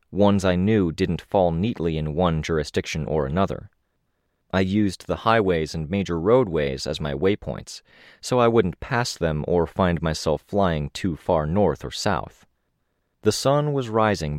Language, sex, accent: English, male, American